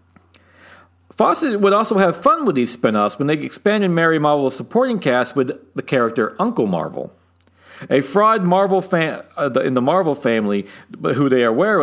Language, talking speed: English, 170 wpm